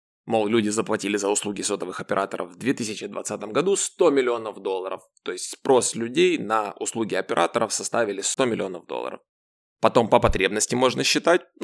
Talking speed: 150 wpm